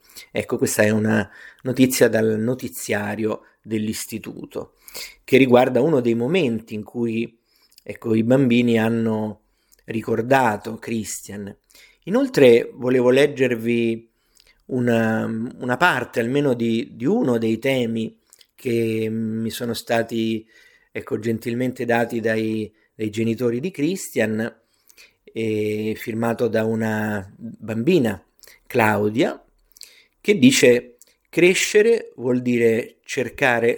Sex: male